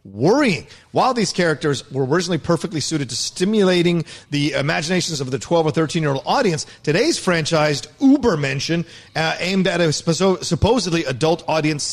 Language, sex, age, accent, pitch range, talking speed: English, male, 40-59, American, 130-170 Hz, 145 wpm